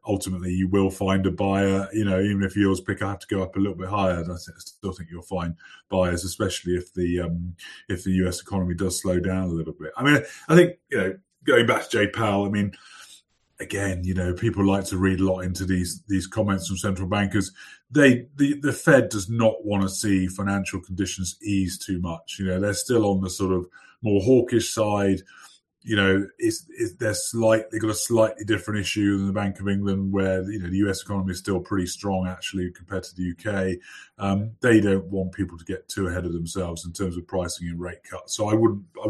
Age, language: 30-49, English